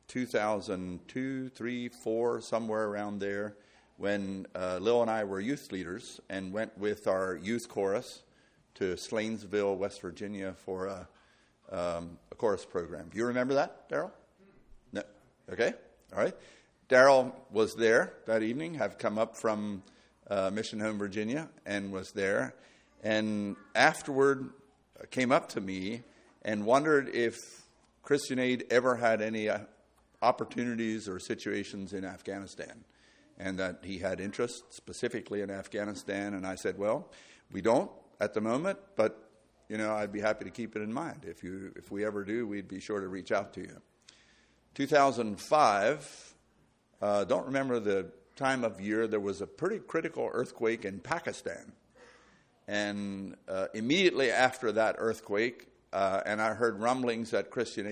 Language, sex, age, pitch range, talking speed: English, male, 50-69, 100-115 Hz, 150 wpm